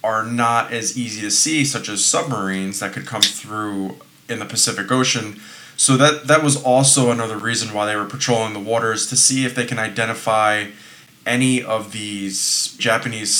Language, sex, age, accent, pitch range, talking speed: English, male, 20-39, American, 105-130 Hz, 180 wpm